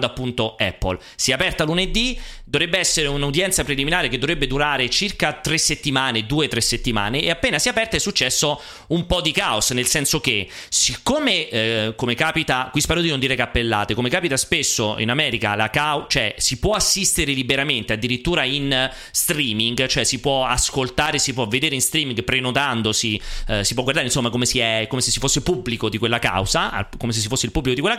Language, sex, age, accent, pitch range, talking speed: Italian, male, 30-49, native, 125-170 Hz, 195 wpm